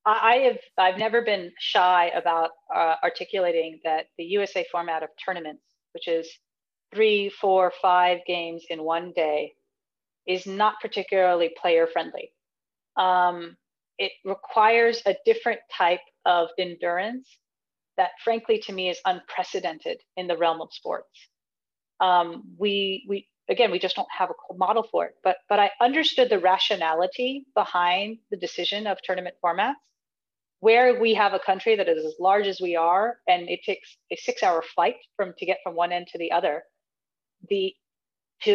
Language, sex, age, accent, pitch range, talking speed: English, female, 30-49, American, 175-225 Hz, 160 wpm